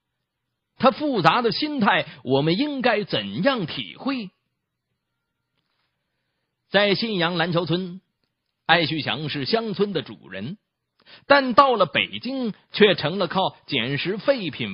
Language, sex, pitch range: Chinese, male, 140-205 Hz